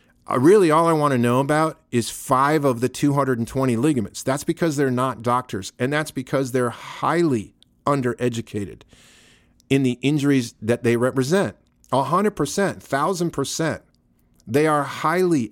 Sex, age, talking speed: male, 50-69, 145 wpm